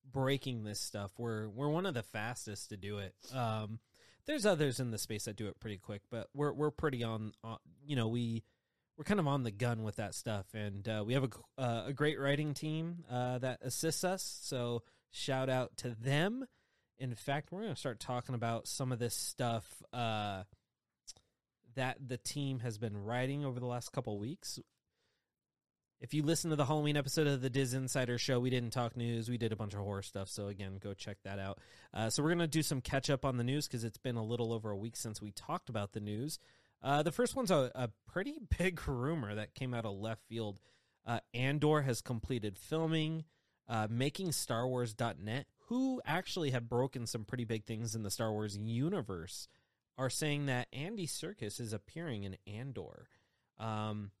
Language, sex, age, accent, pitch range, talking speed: English, male, 20-39, American, 110-140 Hz, 205 wpm